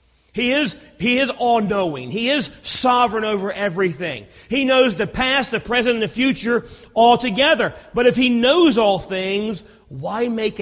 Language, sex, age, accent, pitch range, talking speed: English, male, 40-59, American, 140-220 Hz, 165 wpm